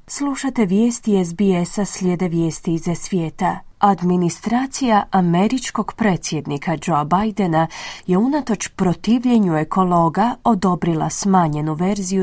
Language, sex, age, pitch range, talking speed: Croatian, female, 30-49, 170-220 Hz, 95 wpm